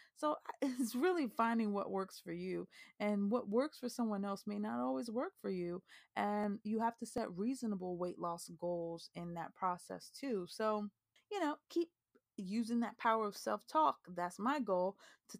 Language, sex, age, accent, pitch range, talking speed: English, female, 20-39, American, 185-245 Hz, 180 wpm